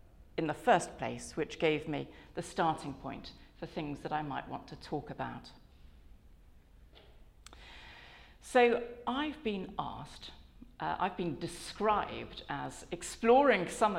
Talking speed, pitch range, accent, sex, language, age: 130 wpm, 135-180 Hz, British, female, English, 50-69